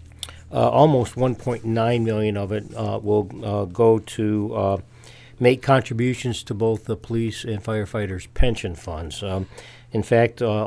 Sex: male